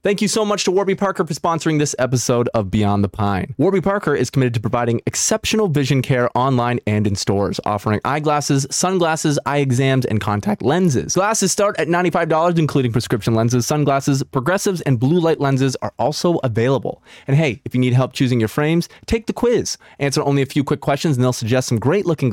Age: 20-39